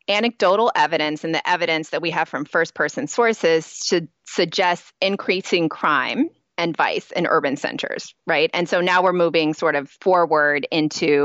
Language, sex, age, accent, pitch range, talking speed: English, female, 30-49, American, 160-205 Hz, 155 wpm